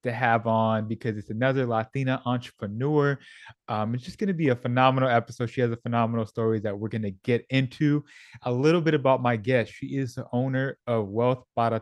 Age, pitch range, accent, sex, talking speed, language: 20-39, 115-135 Hz, American, male, 210 wpm, English